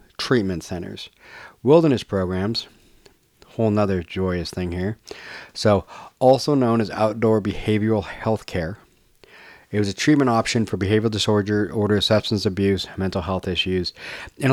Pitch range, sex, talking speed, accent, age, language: 95-120 Hz, male, 135 wpm, American, 30-49, English